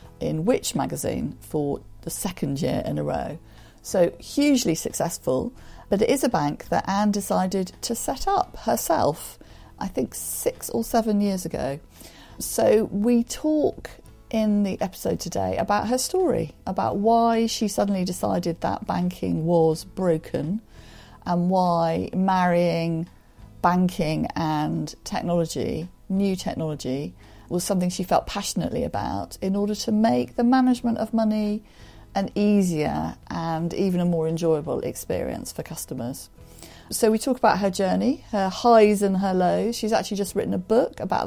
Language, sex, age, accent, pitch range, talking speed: English, female, 40-59, British, 160-215 Hz, 145 wpm